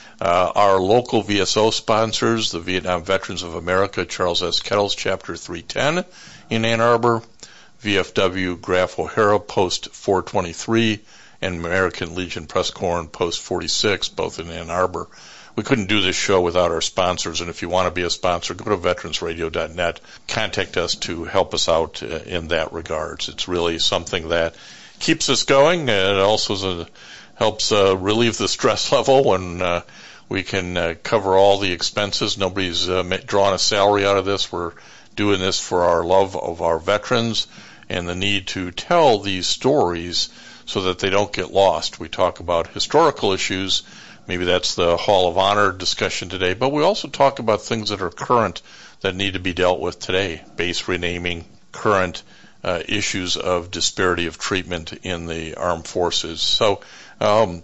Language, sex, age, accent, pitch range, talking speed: English, male, 60-79, American, 90-105 Hz, 170 wpm